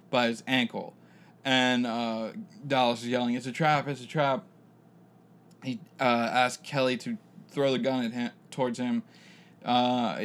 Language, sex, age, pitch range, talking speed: English, male, 20-39, 120-140 Hz, 160 wpm